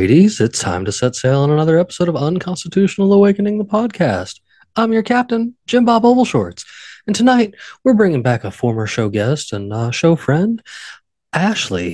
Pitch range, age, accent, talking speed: 105-140 Hz, 20-39, American, 175 wpm